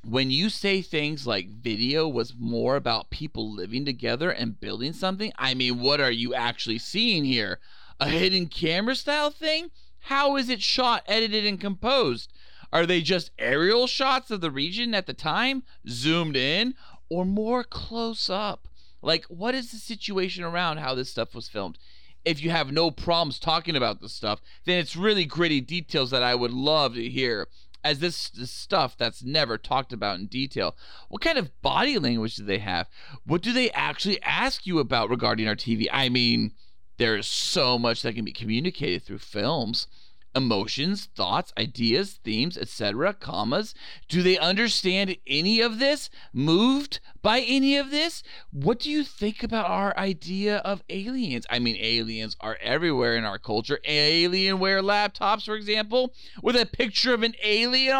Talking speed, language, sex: 170 wpm, English, male